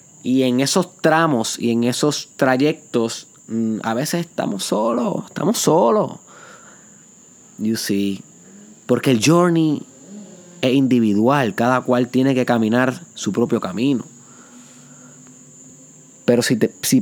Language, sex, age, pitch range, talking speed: Spanish, male, 20-39, 115-145 Hz, 115 wpm